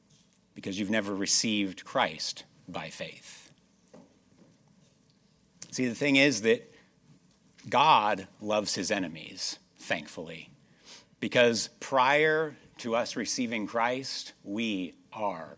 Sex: male